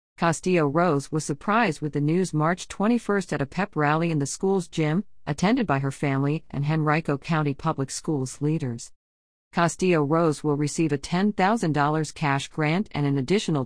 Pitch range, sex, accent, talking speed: 140-180 Hz, female, American, 160 wpm